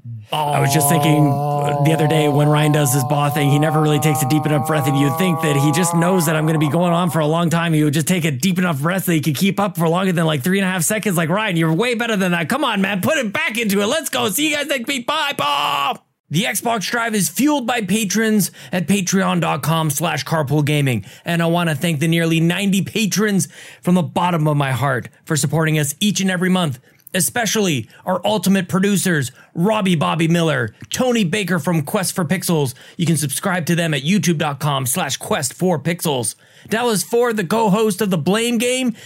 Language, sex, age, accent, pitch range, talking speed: English, male, 20-39, American, 155-200 Hz, 230 wpm